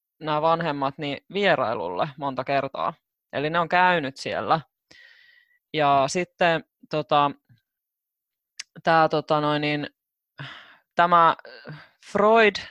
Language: Finnish